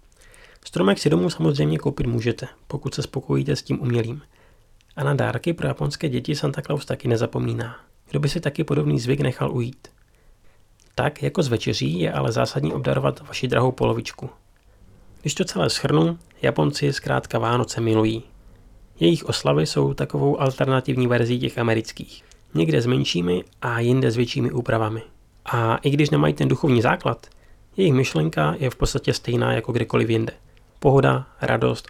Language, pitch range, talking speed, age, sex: Czech, 105-145 Hz, 155 wpm, 30-49, male